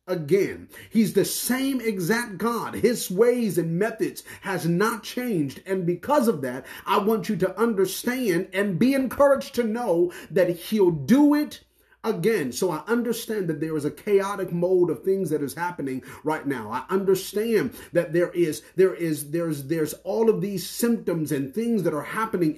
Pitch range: 165-225 Hz